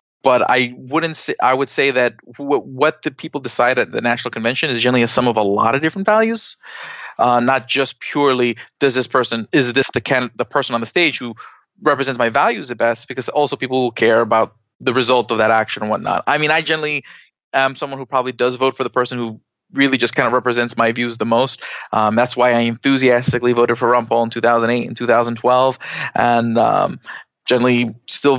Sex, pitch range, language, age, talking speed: male, 120-140 Hz, English, 30-49, 215 wpm